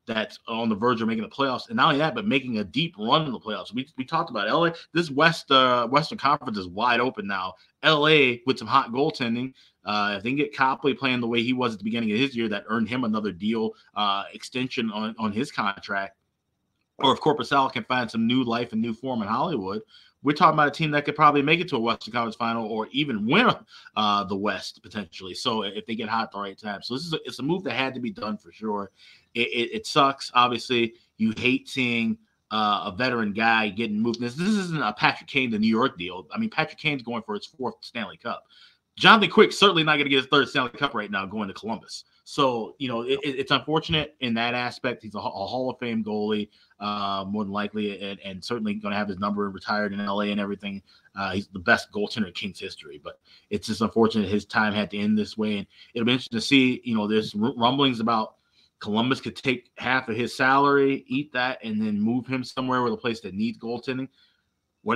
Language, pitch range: English, 110-140 Hz